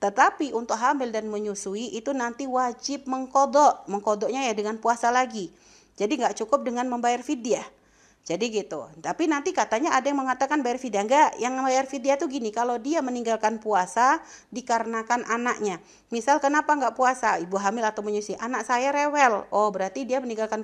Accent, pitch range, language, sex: native, 220-275 Hz, Indonesian, female